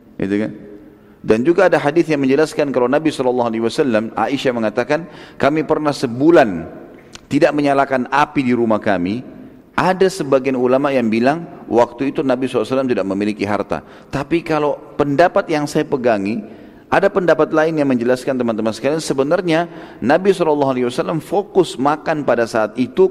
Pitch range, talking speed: 120-165 Hz, 140 wpm